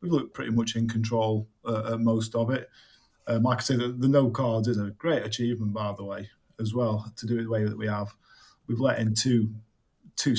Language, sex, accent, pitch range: English, male, British, 110-130 Hz